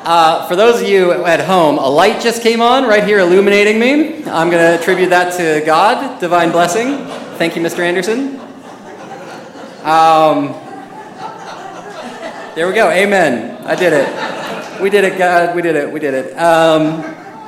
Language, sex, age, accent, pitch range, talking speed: English, male, 30-49, American, 125-185 Hz, 165 wpm